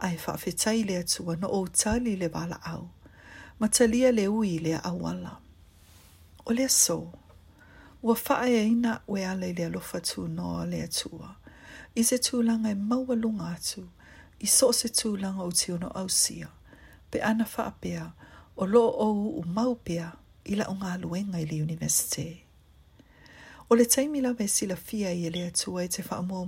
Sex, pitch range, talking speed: female, 165-230 Hz, 170 wpm